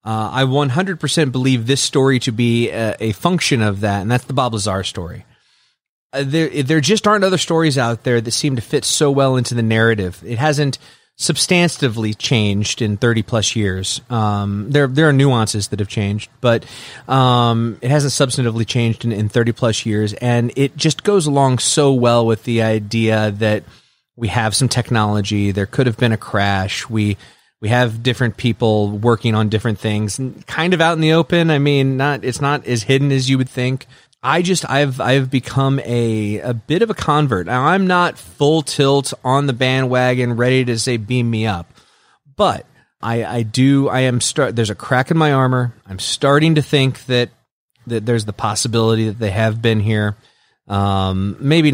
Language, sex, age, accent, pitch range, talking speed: English, male, 30-49, American, 110-140 Hz, 190 wpm